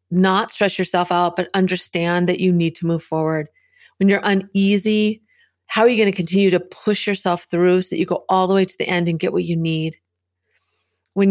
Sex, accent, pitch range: female, American, 165-195 Hz